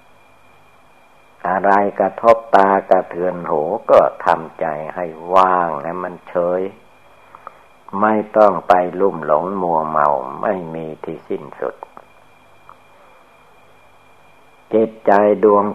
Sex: male